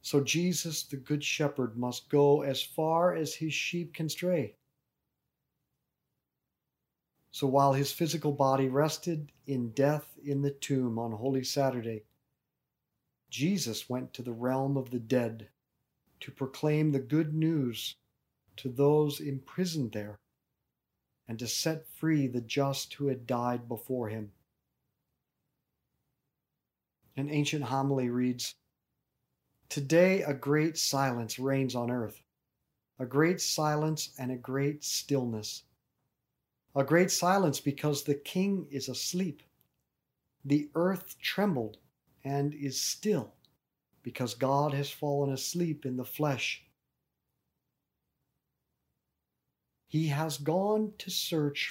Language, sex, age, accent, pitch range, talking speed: English, male, 50-69, American, 125-150 Hz, 115 wpm